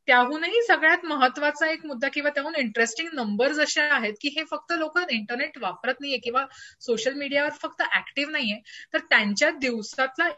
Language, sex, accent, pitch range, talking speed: Marathi, female, native, 245-305 Hz, 155 wpm